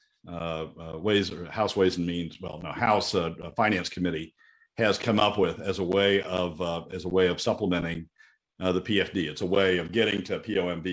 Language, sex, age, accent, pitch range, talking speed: English, male, 50-69, American, 95-120 Hz, 215 wpm